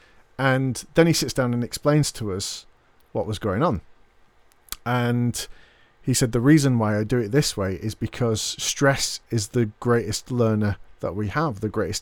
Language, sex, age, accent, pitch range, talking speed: English, male, 40-59, British, 110-135 Hz, 180 wpm